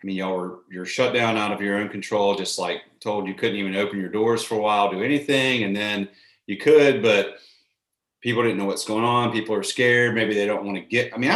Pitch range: 100-130 Hz